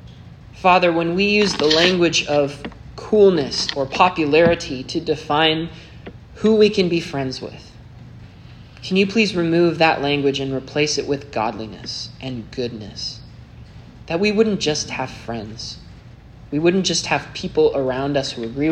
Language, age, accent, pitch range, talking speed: English, 20-39, American, 120-155 Hz, 145 wpm